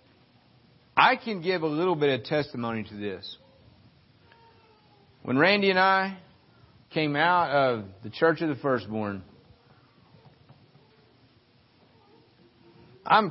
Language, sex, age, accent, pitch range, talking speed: English, male, 50-69, American, 120-190 Hz, 105 wpm